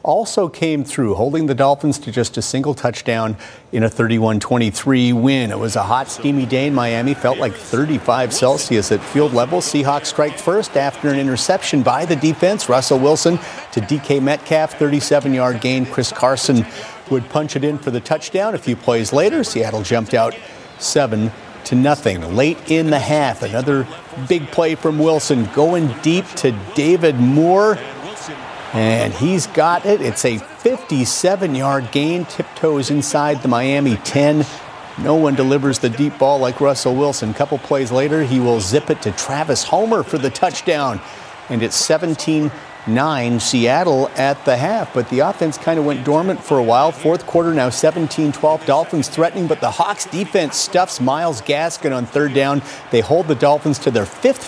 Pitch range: 125-160 Hz